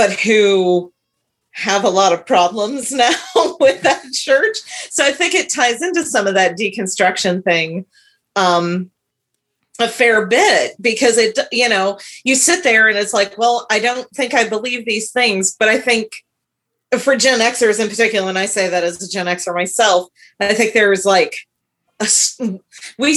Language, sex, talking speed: English, female, 170 wpm